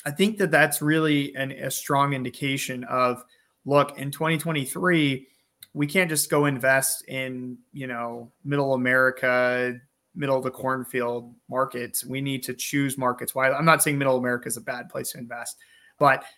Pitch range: 125-150 Hz